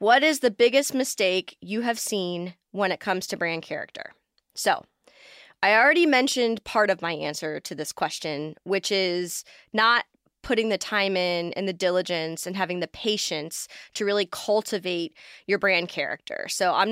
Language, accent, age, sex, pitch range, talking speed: English, American, 20-39, female, 185-240 Hz, 165 wpm